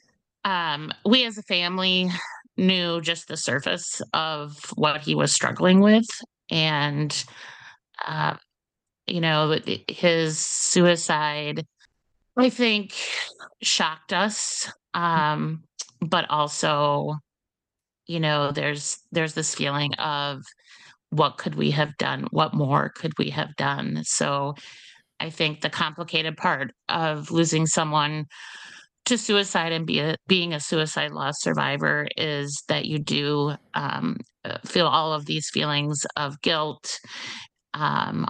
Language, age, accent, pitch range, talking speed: English, 30-49, American, 150-180 Hz, 120 wpm